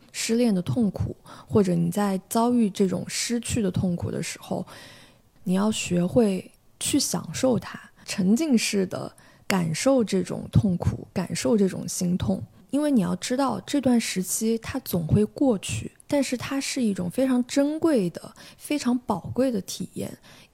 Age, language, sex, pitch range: 20-39, Chinese, female, 185-255 Hz